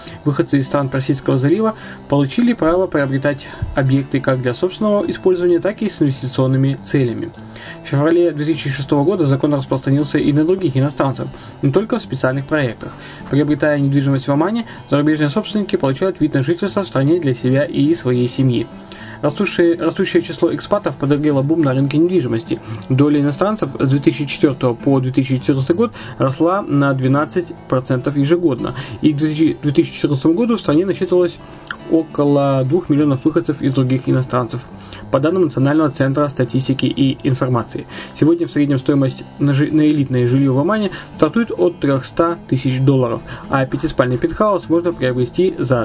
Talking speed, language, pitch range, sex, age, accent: 150 wpm, Russian, 135-170 Hz, male, 20-39, native